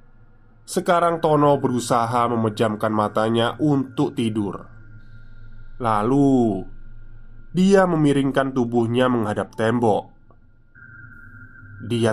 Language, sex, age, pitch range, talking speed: Indonesian, male, 20-39, 110-135 Hz, 70 wpm